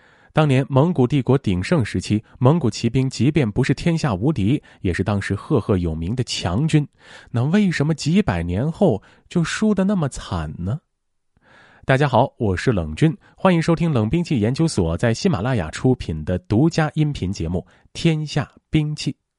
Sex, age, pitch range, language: male, 30-49, 100-160 Hz, Chinese